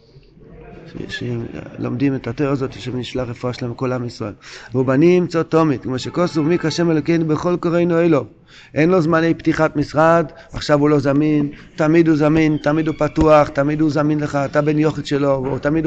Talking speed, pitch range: 185 wpm, 130-160 Hz